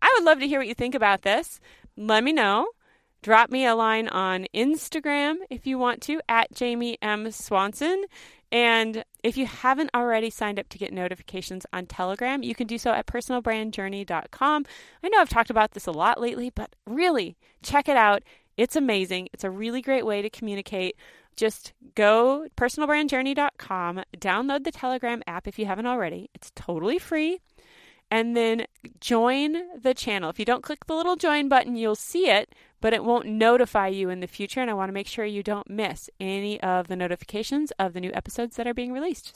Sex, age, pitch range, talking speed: female, 30-49, 210-275 Hz, 195 wpm